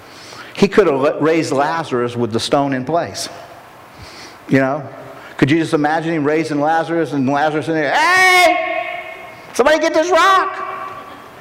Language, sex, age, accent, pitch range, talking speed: English, male, 50-69, American, 130-180 Hz, 145 wpm